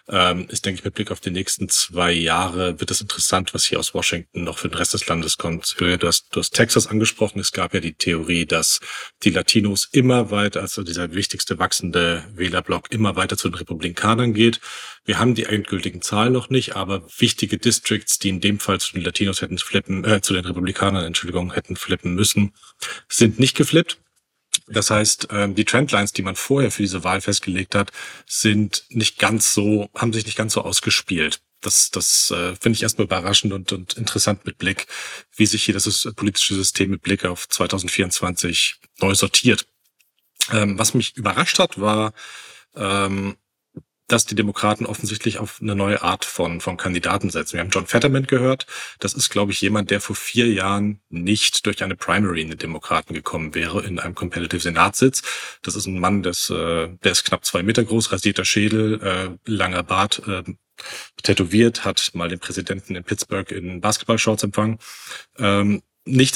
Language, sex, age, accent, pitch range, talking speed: German, male, 40-59, German, 90-110 Hz, 185 wpm